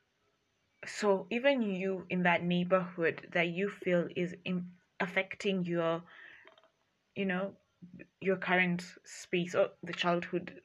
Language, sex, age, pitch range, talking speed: English, female, 20-39, 170-195 Hz, 120 wpm